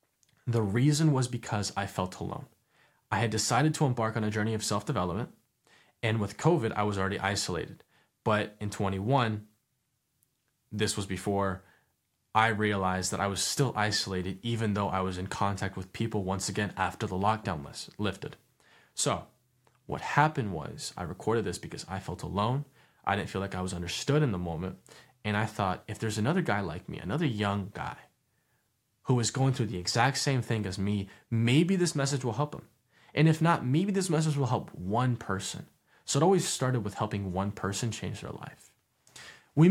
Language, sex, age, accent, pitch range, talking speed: English, male, 20-39, American, 100-140 Hz, 185 wpm